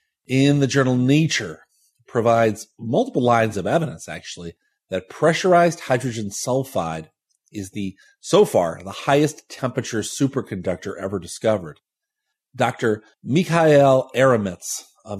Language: English